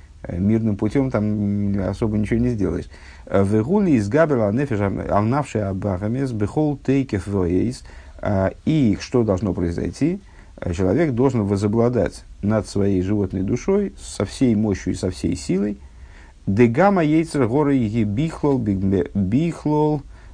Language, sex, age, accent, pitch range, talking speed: Russian, male, 50-69, native, 90-115 Hz, 115 wpm